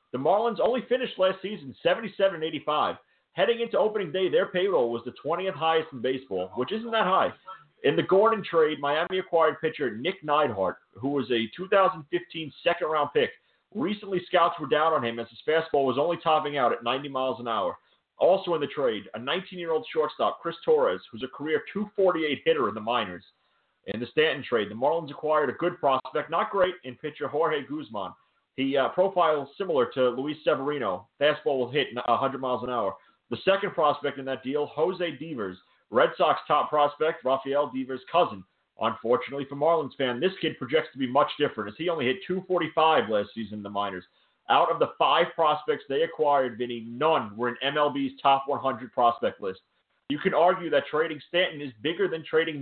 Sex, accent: male, American